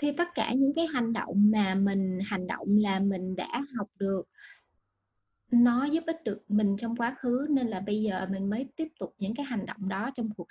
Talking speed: 225 wpm